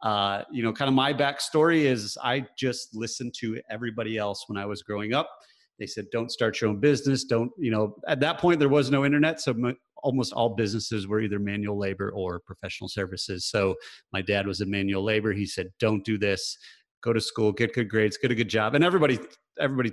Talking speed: 215 wpm